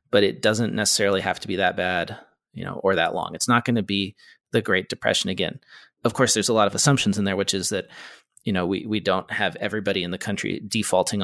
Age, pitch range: 30-49, 105-130 Hz